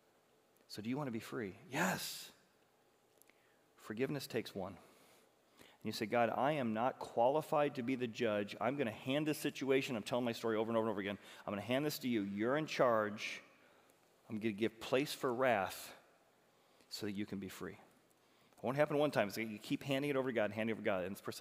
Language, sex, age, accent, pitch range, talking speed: English, male, 40-59, American, 110-150 Hz, 235 wpm